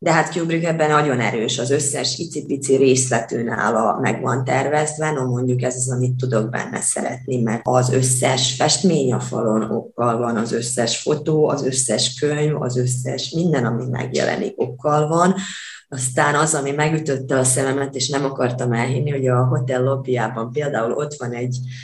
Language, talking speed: Hungarian, 160 wpm